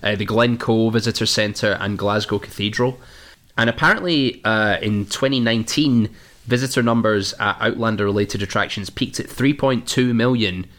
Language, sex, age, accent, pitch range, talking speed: English, male, 20-39, British, 95-110 Hz, 130 wpm